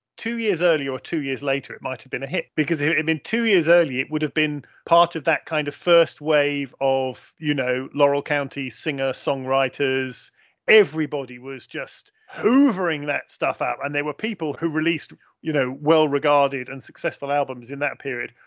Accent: British